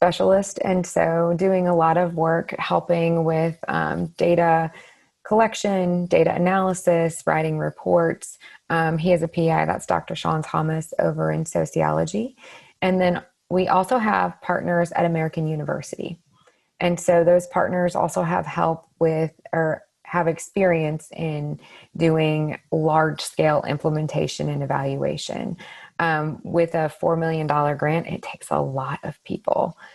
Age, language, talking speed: 20-39, English, 135 wpm